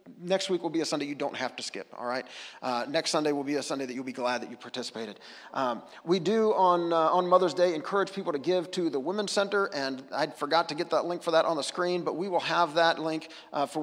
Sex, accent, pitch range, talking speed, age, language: male, American, 155-185 Hz, 275 wpm, 40-59, English